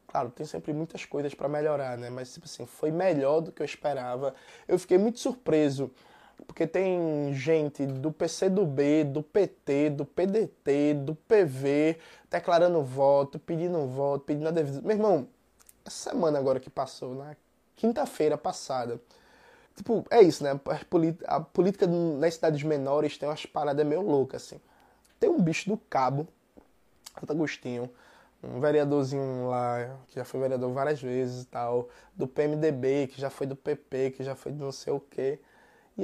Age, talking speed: 20-39, 165 wpm